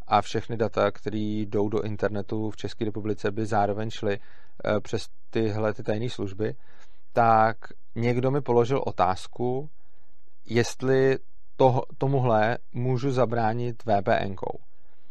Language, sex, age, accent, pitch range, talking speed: Czech, male, 40-59, native, 110-135 Hz, 105 wpm